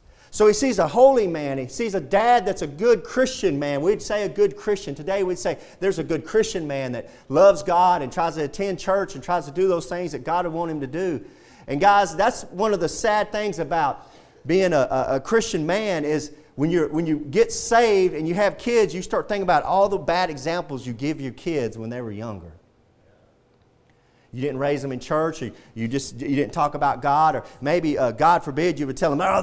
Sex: male